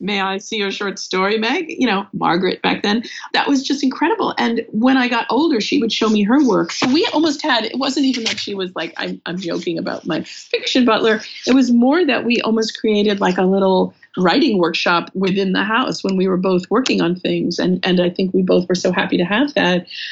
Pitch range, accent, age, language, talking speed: 185-230 Hz, American, 50-69, English, 235 wpm